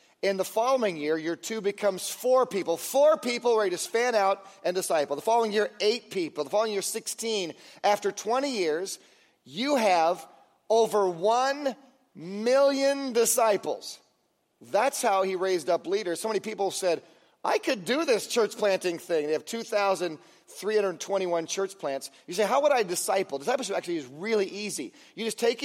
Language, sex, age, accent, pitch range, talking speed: English, male, 40-59, American, 185-235 Hz, 170 wpm